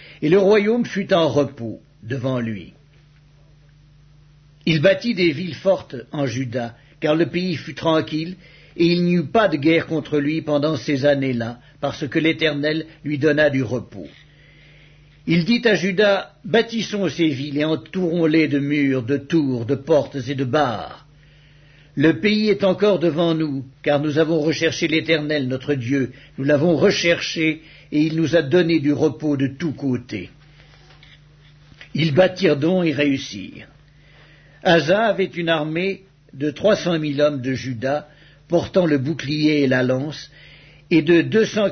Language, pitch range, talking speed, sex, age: English, 145-165 Hz, 155 wpm, male, 60-79